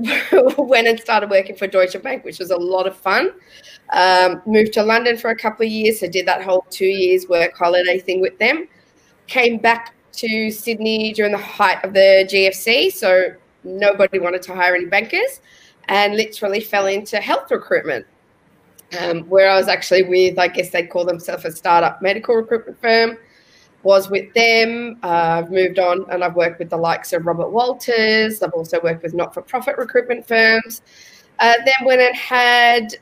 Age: 20-39